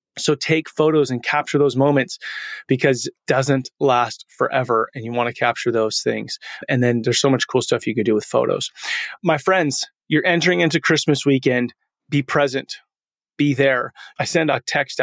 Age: 30-49